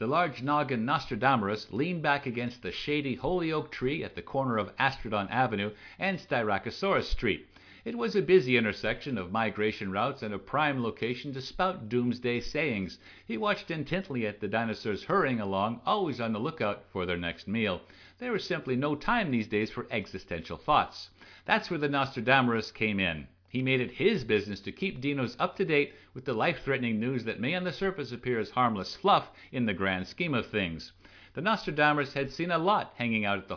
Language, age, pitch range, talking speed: English, 60-79, 110-155 Hz, 190 wpm